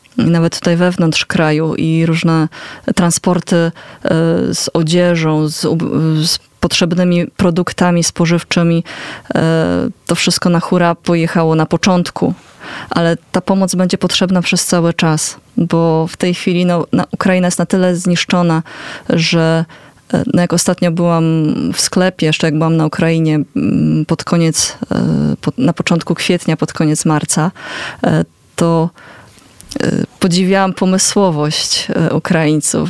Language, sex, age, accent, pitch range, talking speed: Polish, female, 20-39, native, 165-190 Hz, 110 wpm